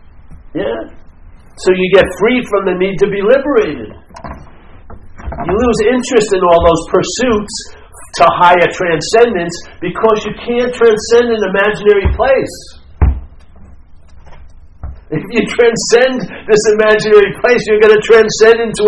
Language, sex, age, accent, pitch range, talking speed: English, male, 60-79, American, 165-220 Hz, 120 wpm